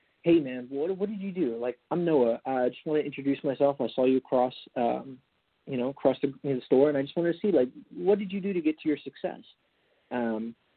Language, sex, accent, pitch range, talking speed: English, male, American, 120-145 Hz, 250 wpm